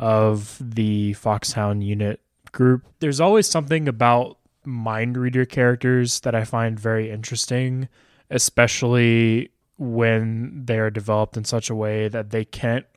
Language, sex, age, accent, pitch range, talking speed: English, male, 20-39, American, 110-125 Hz, 130 wpm